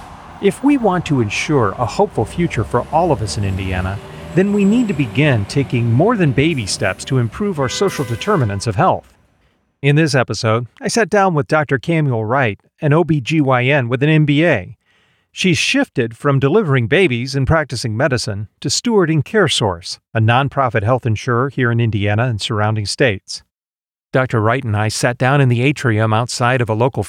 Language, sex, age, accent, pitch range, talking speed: English, male, 40-59, American, 110-150 Hz, 175 wpm